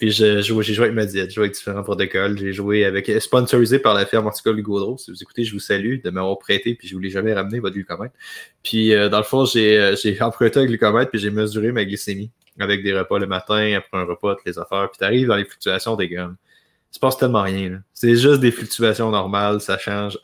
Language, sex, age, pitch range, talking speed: French, male, 20-39, 100-120 Hz, 250 wpm